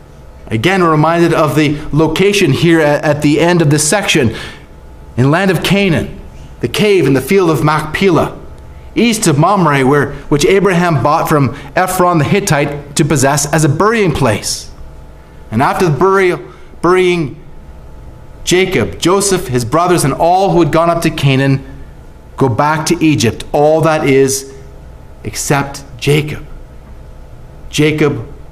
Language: English